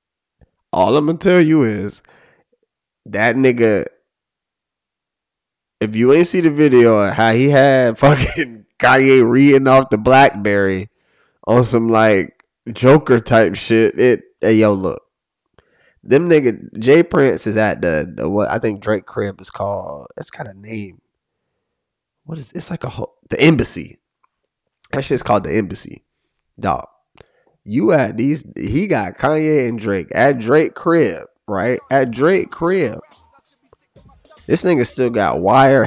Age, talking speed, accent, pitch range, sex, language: 20-39, 145 wpm, American, 105-150 Hz, male, English